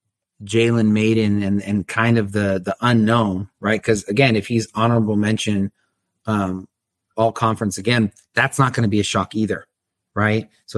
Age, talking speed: 30-49, 165 wpm